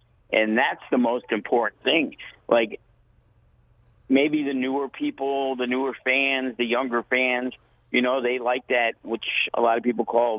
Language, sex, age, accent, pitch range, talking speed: English, male, 50-69, American, 115-140 Hz, 160 wpm